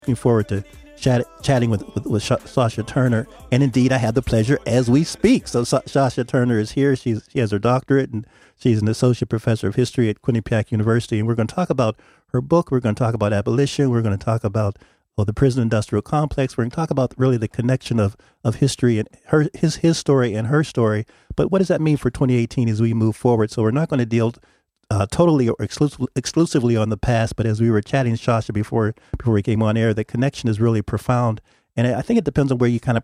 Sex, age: male, 40-59